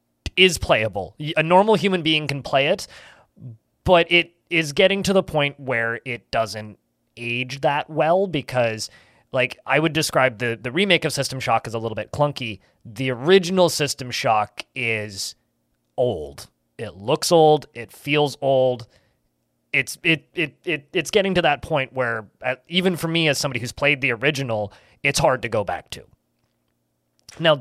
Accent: American